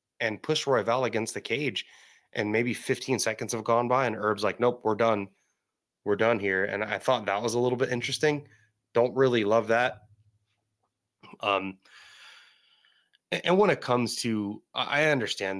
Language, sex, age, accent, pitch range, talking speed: English, male, 30-49, American, 95-115 Hz, 170 wpm